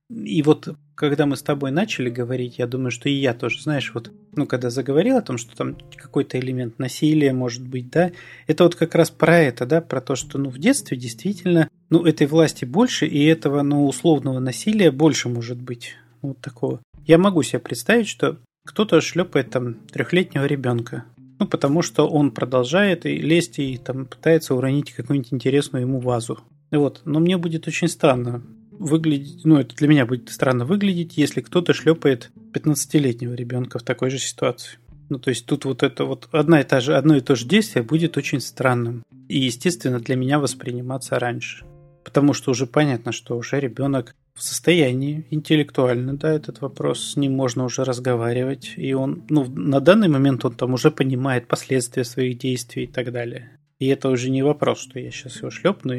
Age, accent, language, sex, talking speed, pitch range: 30-49, native, Russian, male, 185 wpm, 125-155 Hz